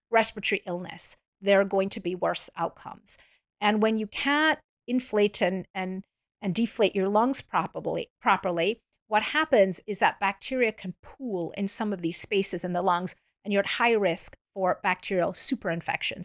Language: English